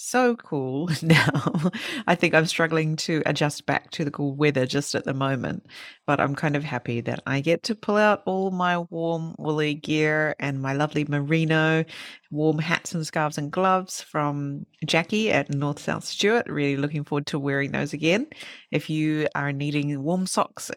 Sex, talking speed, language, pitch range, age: female, 180 wpm, English, 145-175 Hz, 30-49